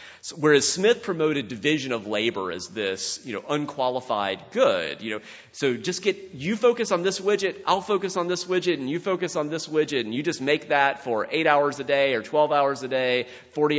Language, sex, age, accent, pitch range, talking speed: English, male, 30-49, American, 110-155 Hz, 215 wpm